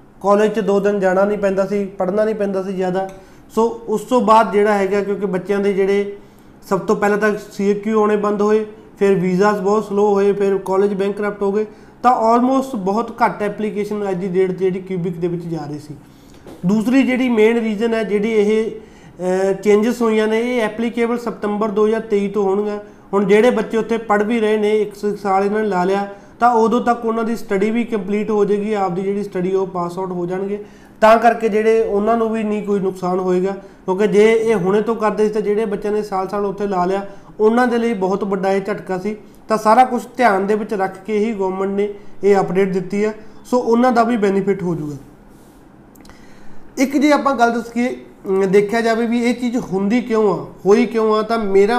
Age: 30-49